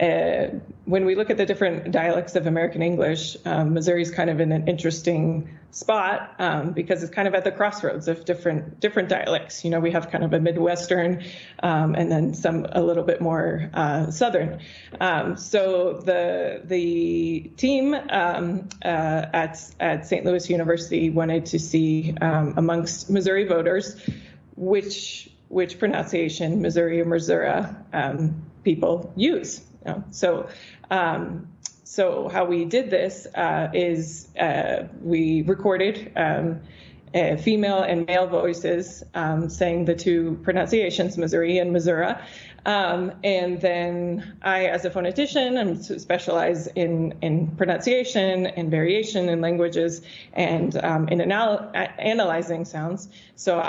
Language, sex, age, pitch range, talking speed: English, female, 20-39, 165-190 Hz, 145 wpm